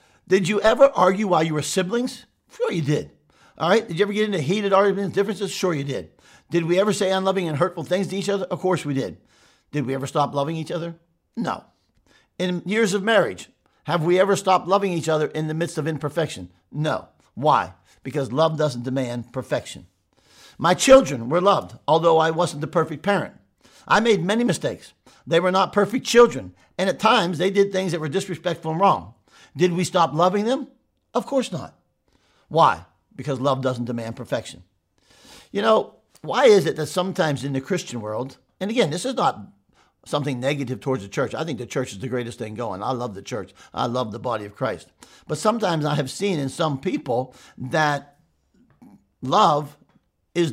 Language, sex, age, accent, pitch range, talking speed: English, male, 50-69, American, 140-195 Hz, 195 wpm